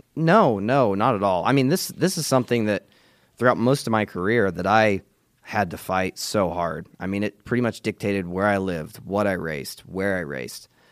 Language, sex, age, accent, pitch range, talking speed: English, male, 20-39, American, 90-110 Hz, 215 wpm